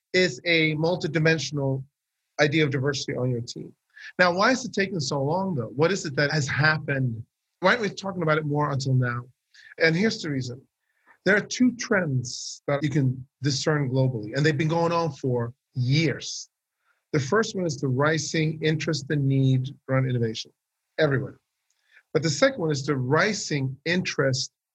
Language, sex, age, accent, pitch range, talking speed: English, male, 40-59, American, 135-175 Hz, 175 wpm